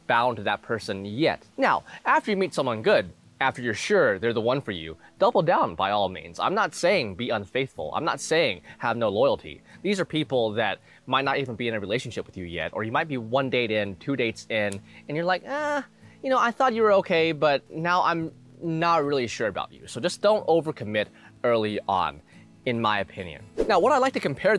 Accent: American